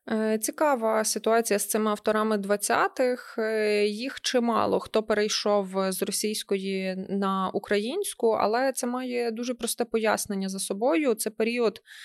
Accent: native